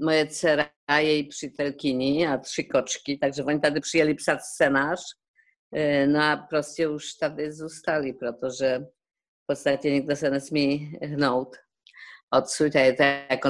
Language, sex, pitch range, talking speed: Czech, female, 135-165 Hz, 130 wpm